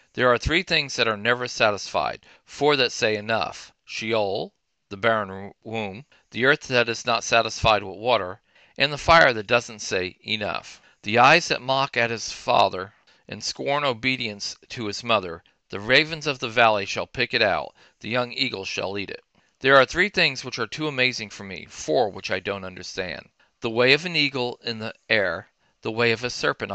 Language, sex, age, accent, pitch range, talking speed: English, male, 50-69, American, 105-130 Hz, 195 wpm